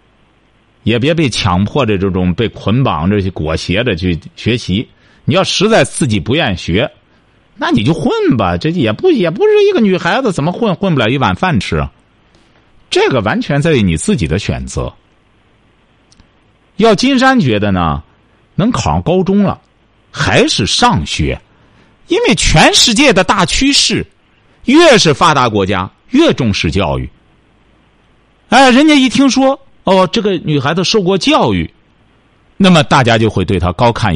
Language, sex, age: Chinese, male, 50-69